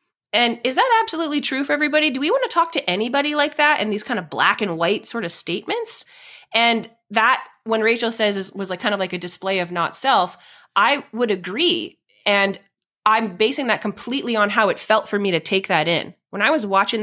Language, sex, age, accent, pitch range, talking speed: English, female, 20-39, American, 210-280 Hz, 220 wpm